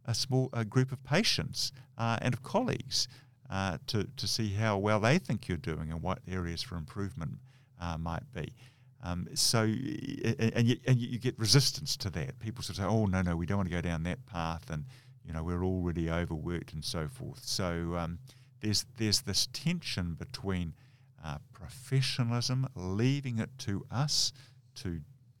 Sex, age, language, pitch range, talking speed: male, 50-69, English, 100-130 Hz, 180 wpm